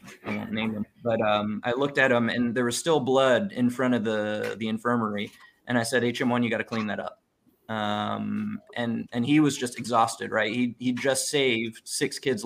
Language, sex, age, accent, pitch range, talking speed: English, male, 20-39, American, 110-130 Hz, 210 wpm